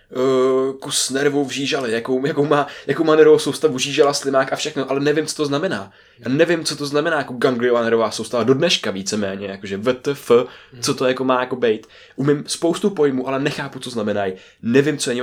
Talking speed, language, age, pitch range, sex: 195 wpm, Czech, 20-39, 115-140 Hz, male